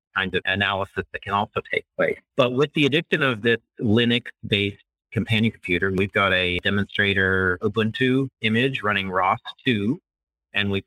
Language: English